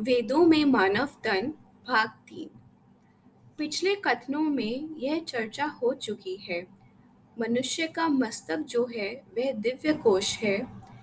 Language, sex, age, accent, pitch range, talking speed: Hindi, female, 20-39, native, 215-300 Hz, 125 wpm